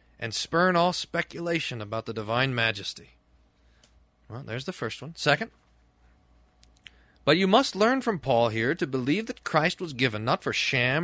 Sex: male